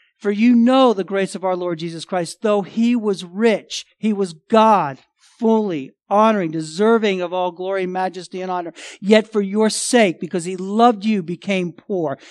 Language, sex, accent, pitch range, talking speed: English, male, American, 160-205 Hz, 175 wpm